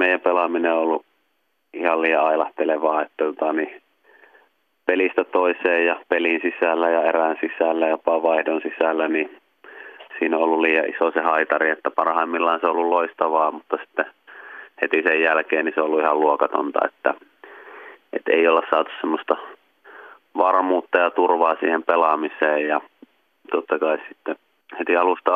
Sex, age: male, 30-49